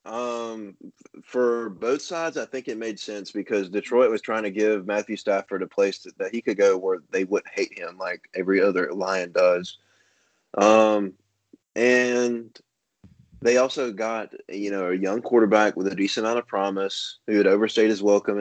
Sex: male